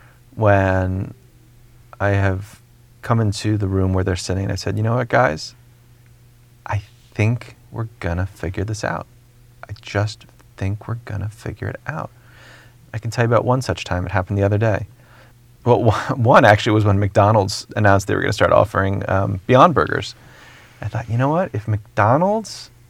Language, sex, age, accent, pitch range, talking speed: English, male, 30-49, American, 100-120 Hz, 180 wpm